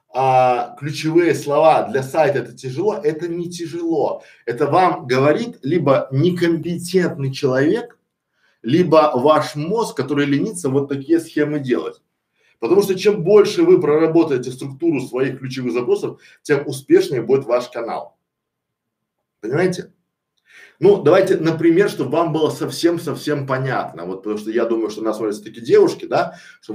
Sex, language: male, Russian